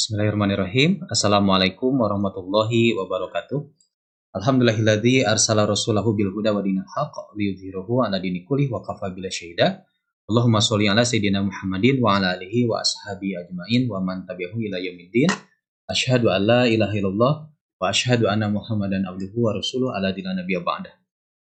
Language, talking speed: Indonesian, 45 wpm